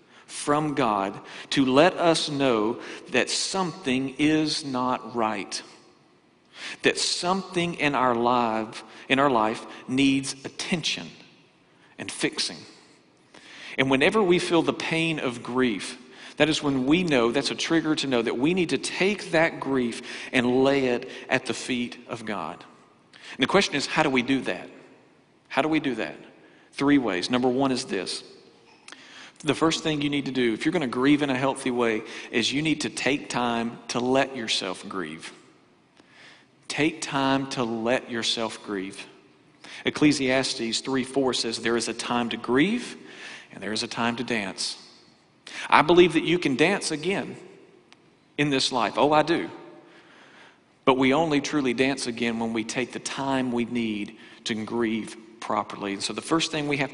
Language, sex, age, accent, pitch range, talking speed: English, male, 50-69, American, 115-150 Hz, 165 wpm